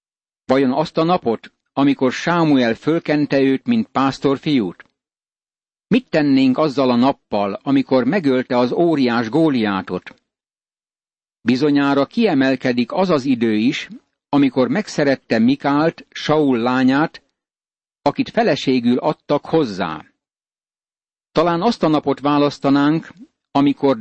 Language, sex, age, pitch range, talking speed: Hungarian, male, 60-79, 130-160 Hz, 100 wpm